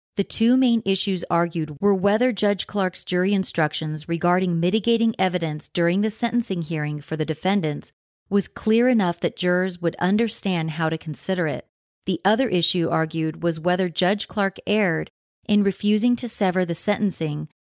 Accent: American